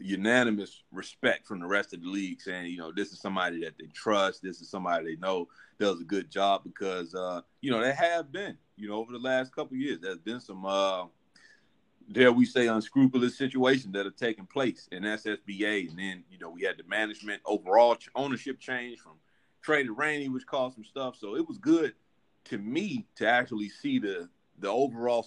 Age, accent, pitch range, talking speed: 30-49, American, 100-135 Hz, 205 wpm